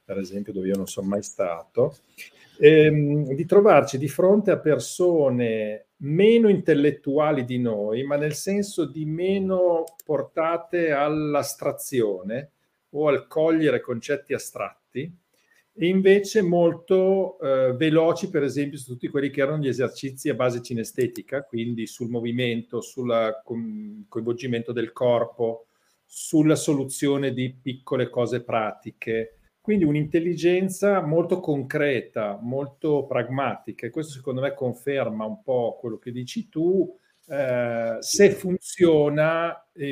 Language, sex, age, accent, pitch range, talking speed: Italian, male, 50-69, native, 120-160 Hz, 125 wpm